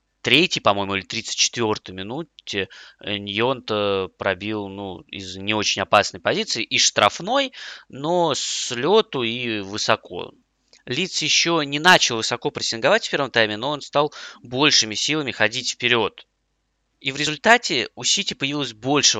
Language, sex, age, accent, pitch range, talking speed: Russian, male, 20-39, native, 105-145 Hz, 135 wpm